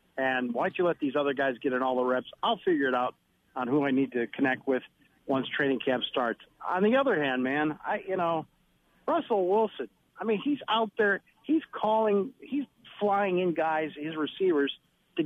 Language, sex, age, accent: English, male, 50-69, American